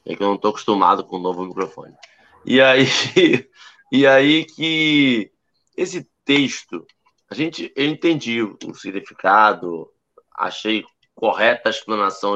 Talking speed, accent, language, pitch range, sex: 120 wpm, Brazilian, Portuguese, 125-185 Hz, male